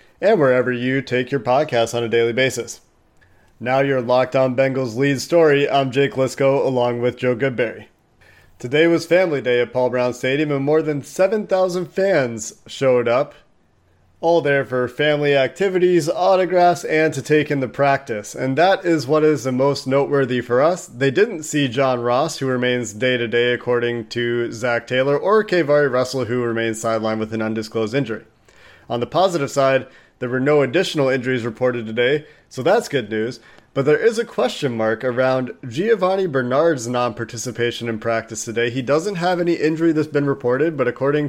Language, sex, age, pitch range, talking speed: English, male, 30-49, 125-155 Hz, 175 wpm